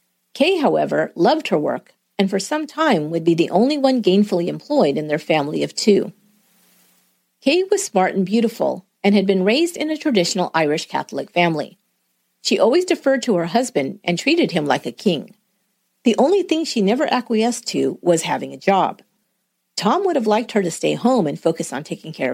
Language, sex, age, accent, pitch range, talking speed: English, female, 40-59, American, 160-245 Hz, 195 wpm